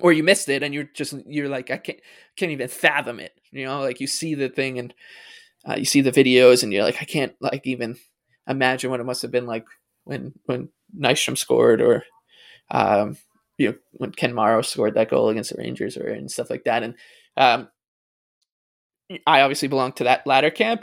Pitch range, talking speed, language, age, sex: 130-155 Hz, 205 wpm, English, 20-39, male